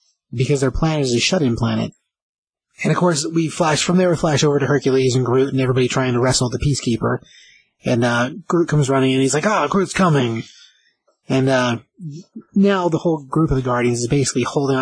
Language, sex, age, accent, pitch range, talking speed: English, male, 30-49, American, 125-165 Hz, 215 wpm